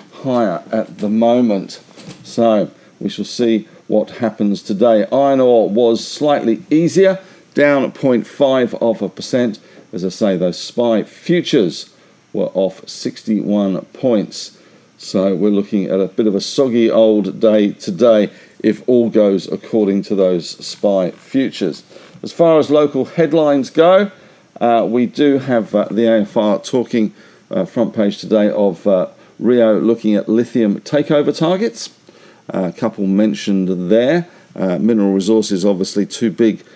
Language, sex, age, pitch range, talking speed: English, male, 50-69, 100-130 Hz, 145 wpm